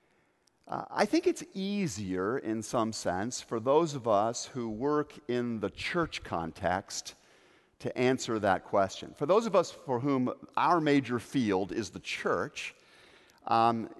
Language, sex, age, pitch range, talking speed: English, male, 50-69, 115-170 Hz, 150 wpm